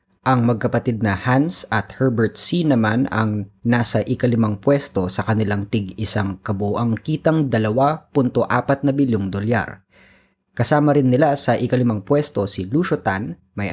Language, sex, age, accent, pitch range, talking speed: Filipino, female, 20-39, native, 105-130 Hz, 140 wpm